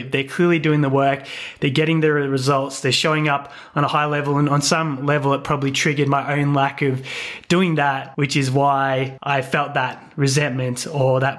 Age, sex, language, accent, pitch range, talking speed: 20-39, male, English, Australian, 140-170 Hz, 200 wpm